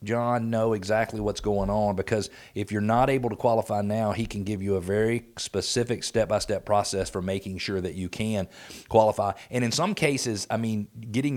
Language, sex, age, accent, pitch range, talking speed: English, male, 40-59, American, 100-120 Hz, 195 wpm